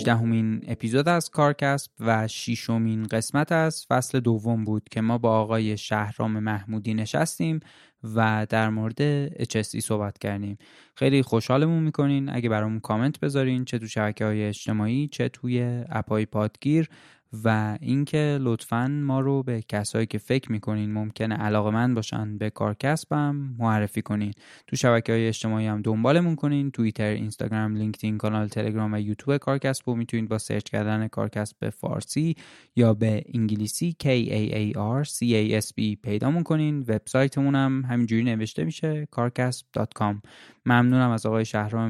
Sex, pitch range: male, 110-130 Hz